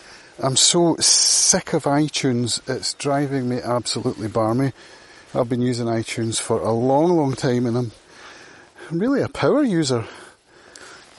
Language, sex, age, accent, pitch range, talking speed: English, male, 30-49, British, 115-140 Hz, 140 wpm